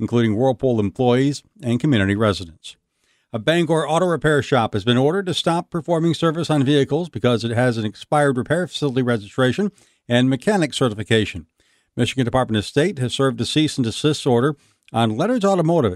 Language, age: English, 60-79